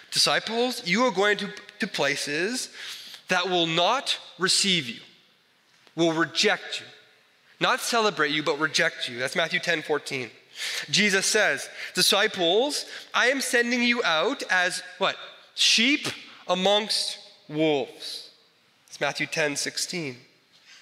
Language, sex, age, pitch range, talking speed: English, male, 30-49, 170-230 Hz, 120 wpm